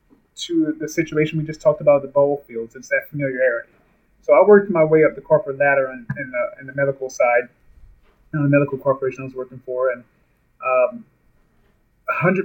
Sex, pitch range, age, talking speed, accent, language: male, 135-165 Hz, 30-49, 185 wpm, American, English